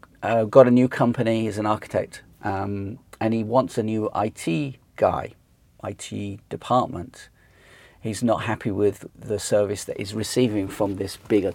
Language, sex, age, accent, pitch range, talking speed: English, male, 40-59, British, 105-130 Hz, 155 wpm